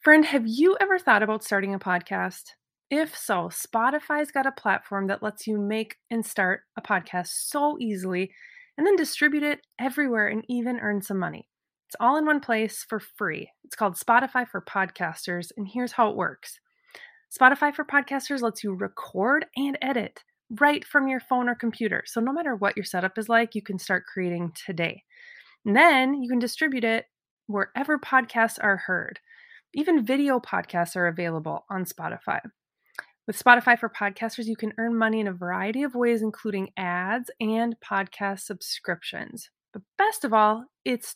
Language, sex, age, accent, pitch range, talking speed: English, female, 20-39, American, 200-270 Hz, 170 wpm